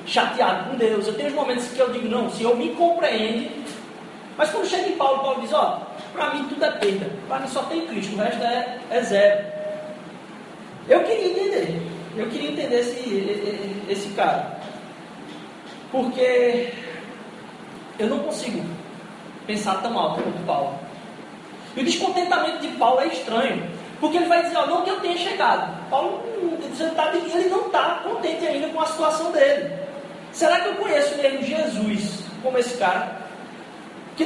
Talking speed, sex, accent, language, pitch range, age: 175 wpm, male, Brazilian, Portuguese, 230-320 Hz, 20-39